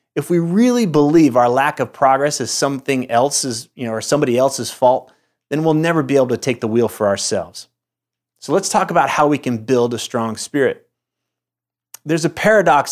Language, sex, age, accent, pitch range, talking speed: English, male, 30-49, American, 115-150 Hz, 195 wpm